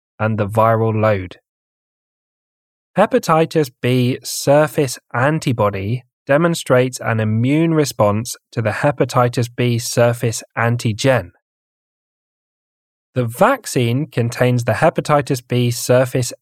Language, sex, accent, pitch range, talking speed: English, male, British, 115-145 Hz, 90 wpm